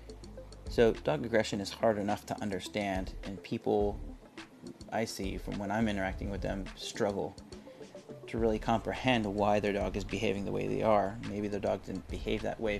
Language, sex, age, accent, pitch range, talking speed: English, male, 30-49, American, 100-115 Hz, 180 wpm